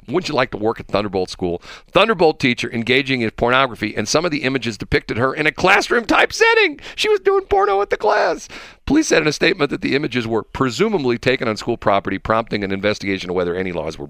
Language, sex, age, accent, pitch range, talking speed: English, male, 50-69, American, 95-135 Hz, 225 wpm